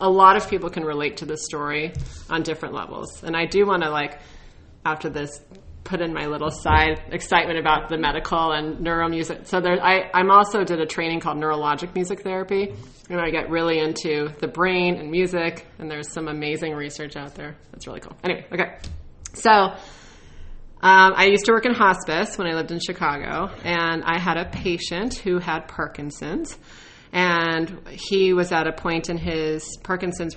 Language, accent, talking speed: English, American, 185 wpm